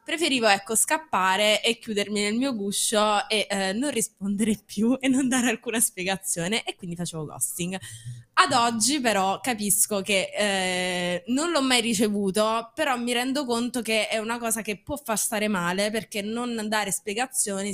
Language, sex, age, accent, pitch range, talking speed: Italian, female, 20-39, native, 185-230 Hz, 160 wpm